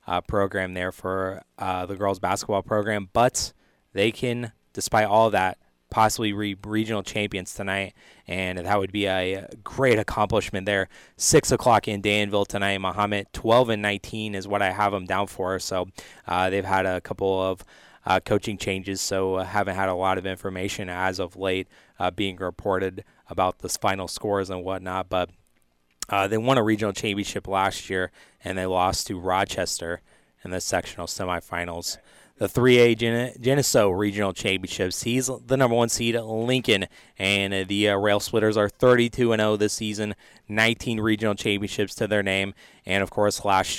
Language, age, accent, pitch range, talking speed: English, 20-39, American, 95-105 Hz, 165 wpm